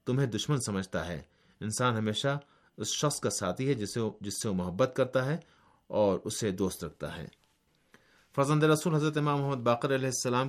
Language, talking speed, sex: Urdu, 165 wpm, male